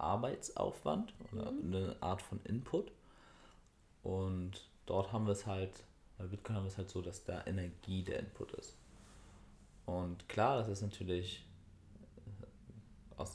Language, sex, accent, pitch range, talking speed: German, male, German, 90-100 Hz, 140 wpm